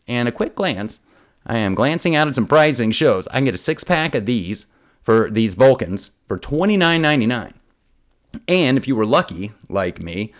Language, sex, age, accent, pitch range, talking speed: English, male, 30-49, American, 110-150 Hz, 180 wpm